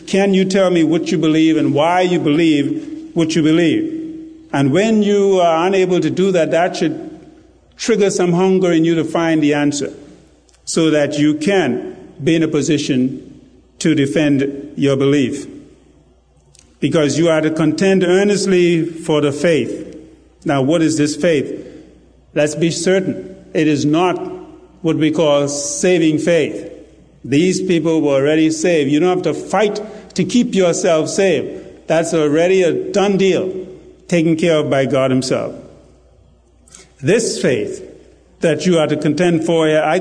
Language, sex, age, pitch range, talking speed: English, male, 50-69, 150-185 Hz, 155 wpm